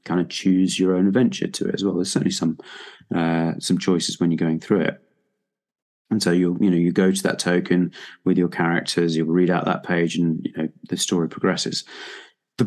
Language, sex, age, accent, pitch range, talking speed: English, male, 30-49, British, 85-100 Hz, 220 wpm